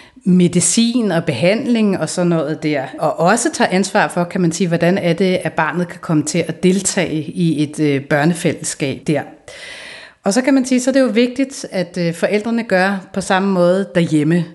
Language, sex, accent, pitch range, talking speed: Danish, female, native, 160-210 Hz, 200 wpm